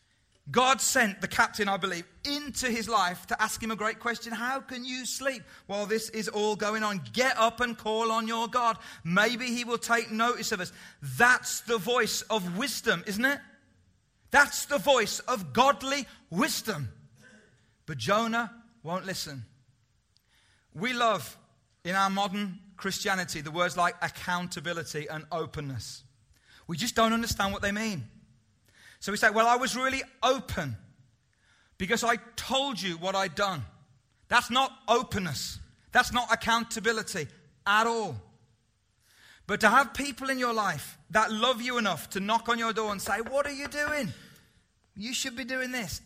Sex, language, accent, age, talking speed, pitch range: male, English, British, 30-49, 165 wpm, 155-235 Hz